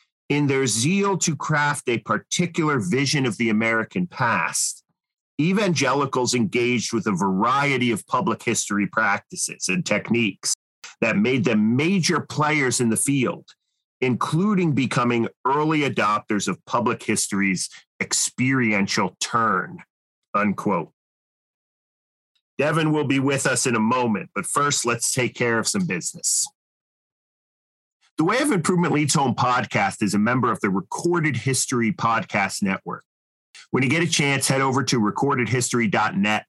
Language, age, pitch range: English, 40-59, 110-150 Hz